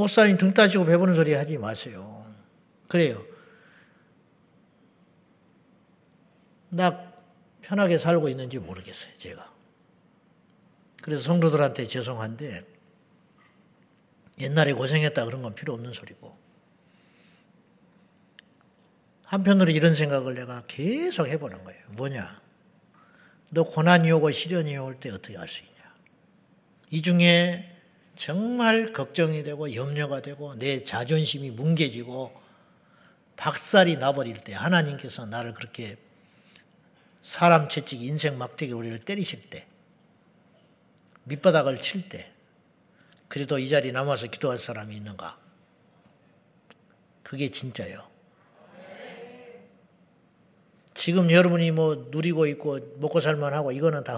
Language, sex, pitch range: Korean, male, 130-180 Hz